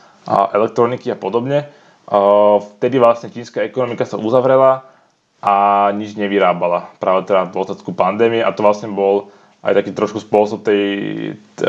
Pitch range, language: 100-120 Hz, Slovak